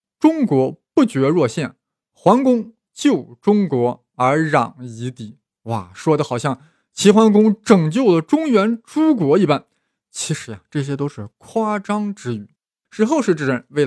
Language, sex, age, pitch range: Chinese, male, 20-39, 135-220 Hz